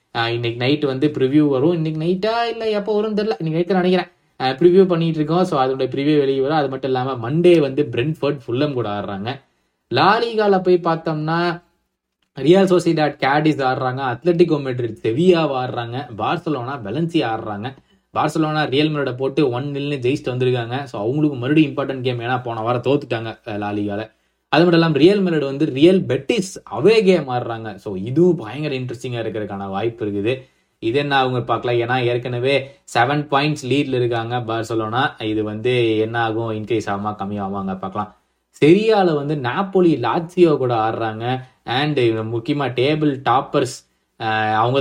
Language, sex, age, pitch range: Tamil, male, 20-39, 115-155 Hz